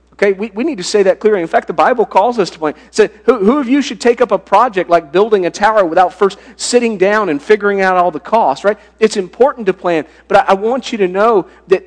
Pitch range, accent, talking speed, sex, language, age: 170-245 Hz, American, 275 wpm, male, English, 40-59